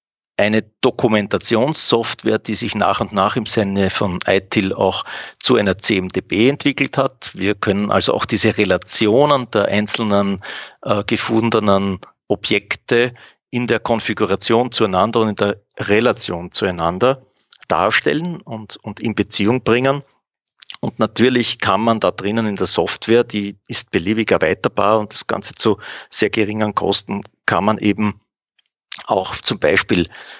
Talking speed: 135 wpm